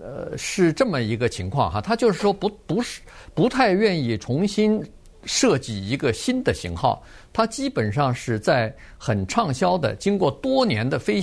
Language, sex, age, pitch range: Chinese, male, 50-69, 110-180 Hz